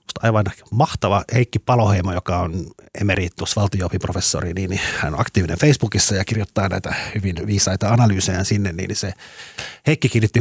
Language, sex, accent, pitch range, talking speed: Finnish, male, native, 90-110 Hz, 140 wpm